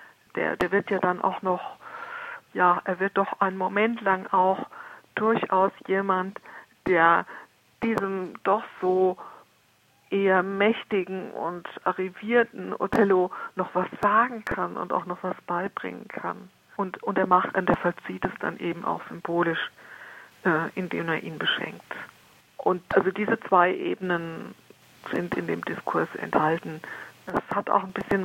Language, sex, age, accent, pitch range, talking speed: German, female, 50-69, German, 180-200 Hz, 140 wpm